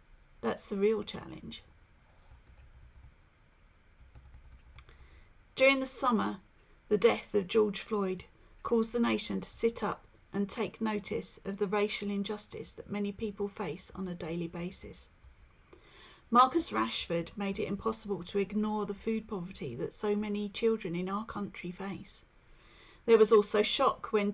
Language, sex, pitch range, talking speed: English, female, 175-215 Hz, 140 wpm